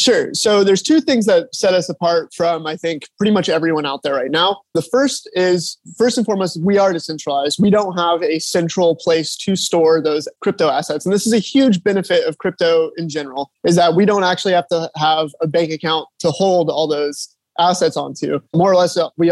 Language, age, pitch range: English, 20-39, 155-190 Hz